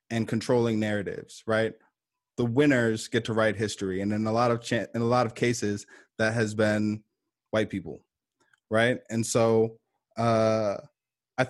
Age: 20-39